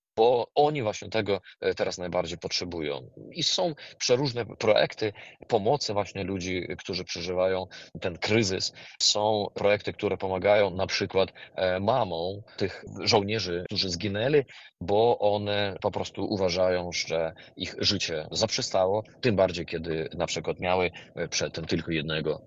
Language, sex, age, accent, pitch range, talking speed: Polish, male, 30-49, native, 90-105 Hz, 125 wpm